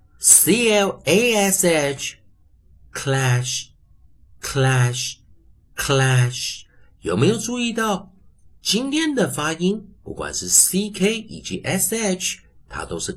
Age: 50-69